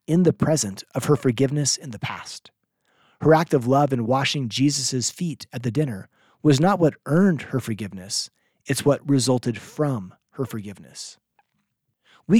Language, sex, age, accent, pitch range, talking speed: English, male, 30-49, American, 120-155 Hz, 160 wpm